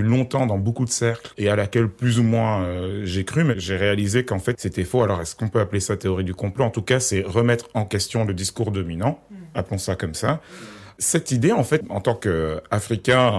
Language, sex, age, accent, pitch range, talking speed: French, male, 40-59, French, 95-120 Hz, 230 wpm